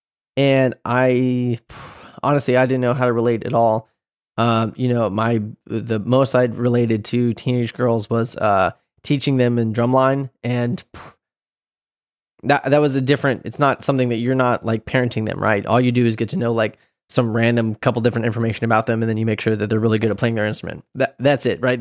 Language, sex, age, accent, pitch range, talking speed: English, male, 20-39, American, 115-135 Hz, 210 wpm